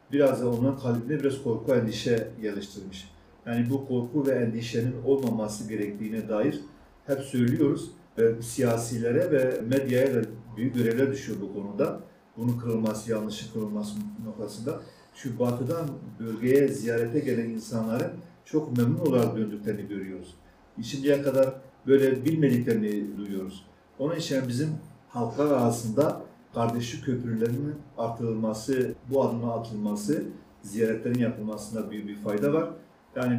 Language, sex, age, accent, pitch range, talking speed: Turkish, male, 50-69, native, 105-130 Hz, 120 wpm